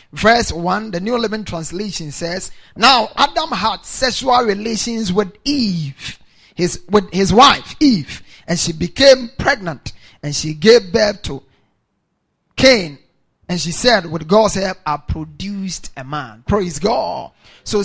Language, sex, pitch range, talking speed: English, male, 190-255 Hz, 140 wpm